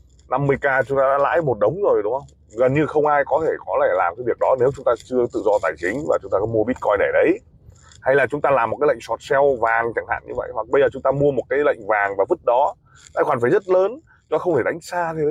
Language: Vietnamese